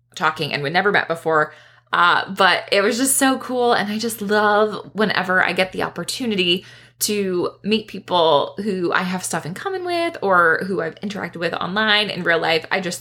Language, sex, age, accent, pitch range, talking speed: English, female, 20-39, American, 165-220 Hz, 200 wpm